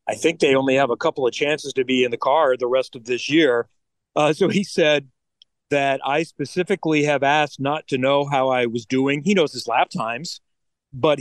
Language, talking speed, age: English, 220 wpm, 40-59